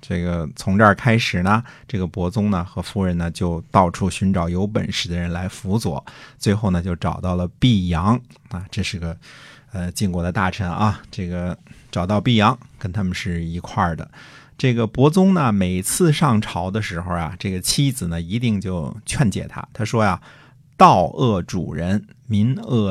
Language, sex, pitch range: Chinese, male, 90-130 Hz